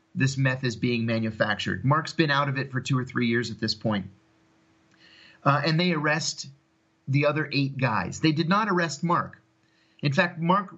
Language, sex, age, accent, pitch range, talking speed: English, male, 40-59, American, 120-160 Hz, 190 wpm